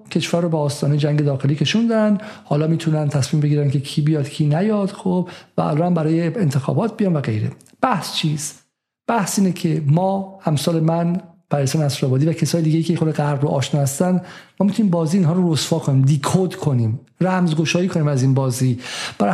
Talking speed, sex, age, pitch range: 185 wpm, male, 50-69, 165-225 Hz